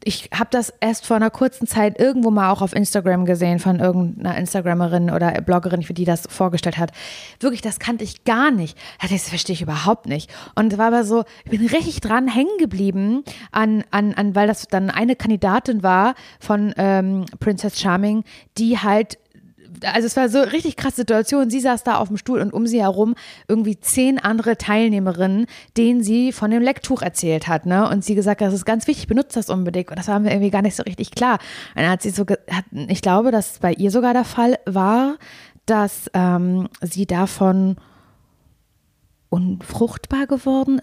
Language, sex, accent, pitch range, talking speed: German, female, German, 185-230 Hz, 195 wpm